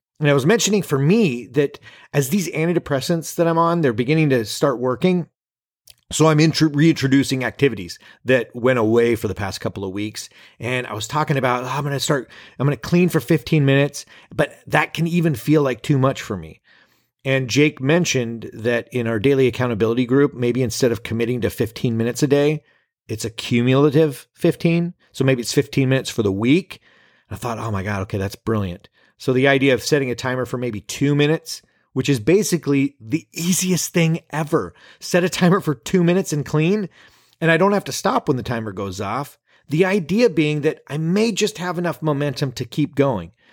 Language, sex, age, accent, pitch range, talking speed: English, male, 30-49, American, 125-165 Hz, 200 wpm